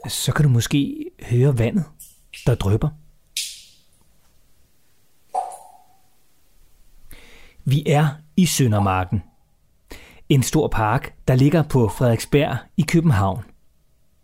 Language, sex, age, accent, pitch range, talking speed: Danish, male, 30-49, native, 105-150 Hz, 90 wpm